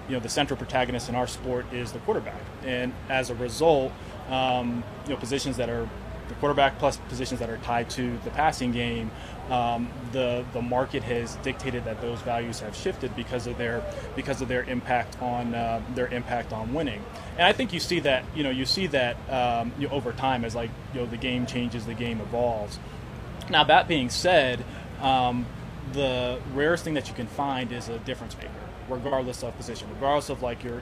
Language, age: English, 20-39